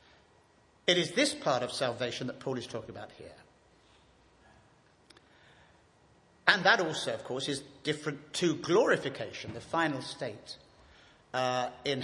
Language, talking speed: English, 130 wpm